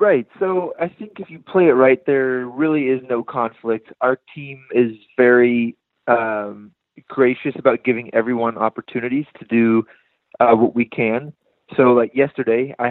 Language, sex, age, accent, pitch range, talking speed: English, male, 20-39, American, 105-125 Hz, 160 wpm